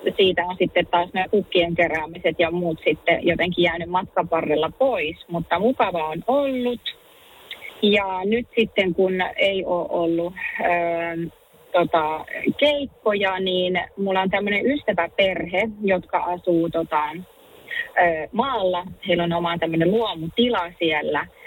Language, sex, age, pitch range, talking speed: Finnish, female, 30-49, 170-220 Hz, 125 wpm